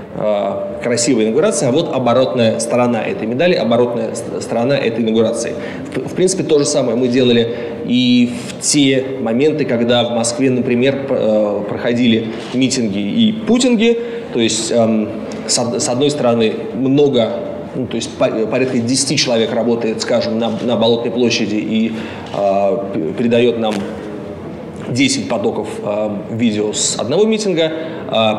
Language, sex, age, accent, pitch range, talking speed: Russian, male, 20-39, native, 115-145 Hz, 130 wpm